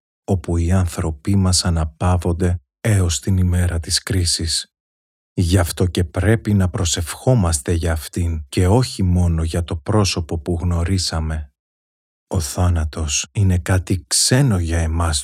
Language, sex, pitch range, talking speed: Greek, male, 80-95 Hz, 130 wpm